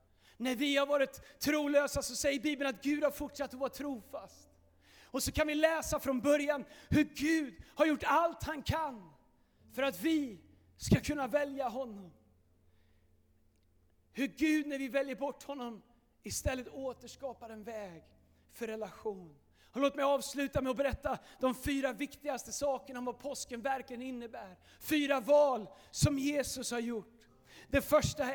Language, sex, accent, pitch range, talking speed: Swedish, male, native, 220-285 Hz, 155 wpm